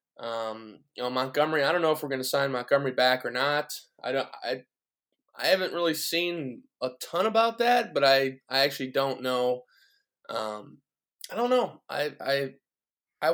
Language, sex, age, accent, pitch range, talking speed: English, male, 20-39, American, 125-165 Hz, 175 wpm